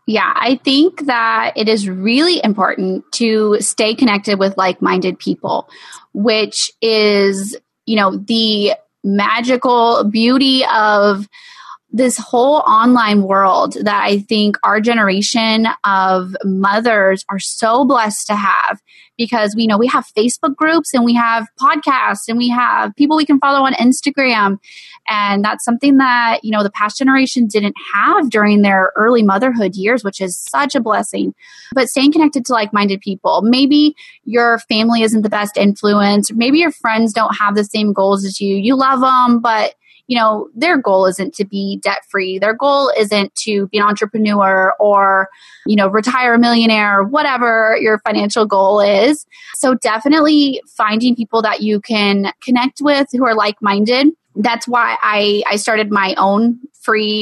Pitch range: 205-255 Hz